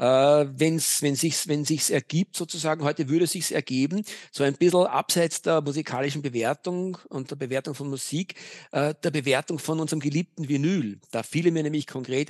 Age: 50-69